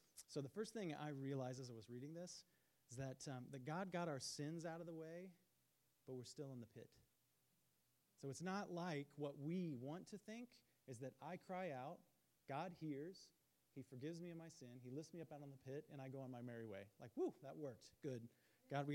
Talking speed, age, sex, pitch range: 230 wpm, 30-49, male, 120-160 Hz